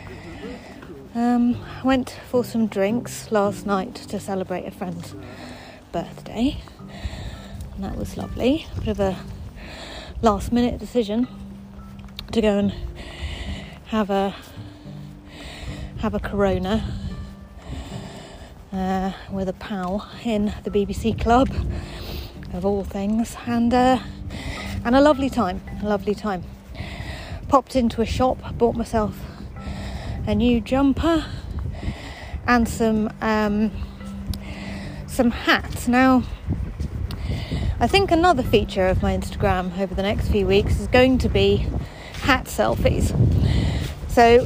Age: 30-49